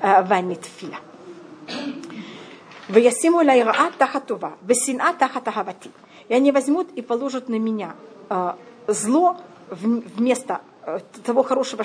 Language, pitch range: Russian, 220-290 Hz